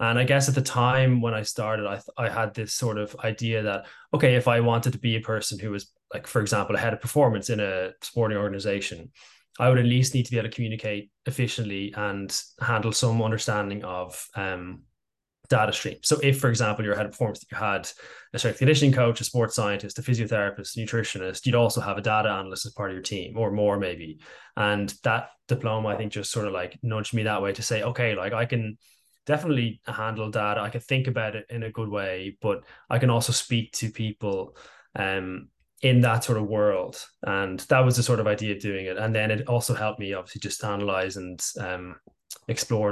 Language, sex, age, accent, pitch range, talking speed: English, male, 20-39, Irish, 105-125 Hz, 220 wpm